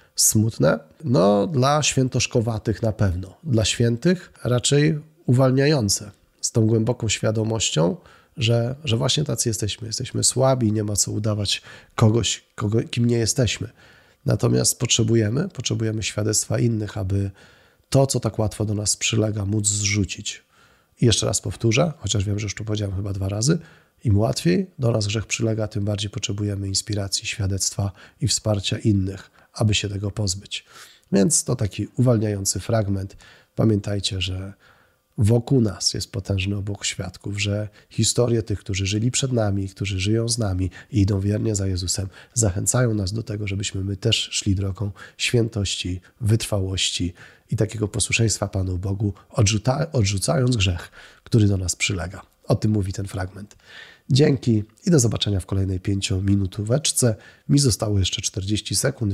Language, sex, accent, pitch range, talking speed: Polish, male, native, 100-115 Hz, 145 wpm